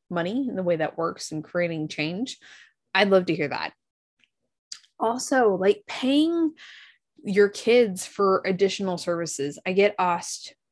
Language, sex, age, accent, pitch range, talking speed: English, female, 20-39, American, 170-225 Hz, 140 wpm